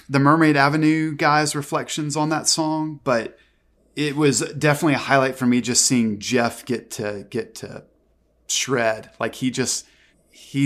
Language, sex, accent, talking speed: English, male, American, 160 wpm